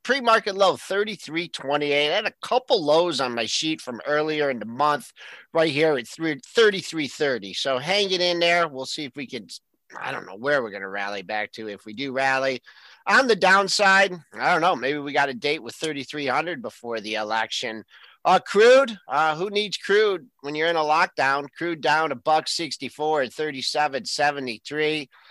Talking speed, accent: 190 wpm, American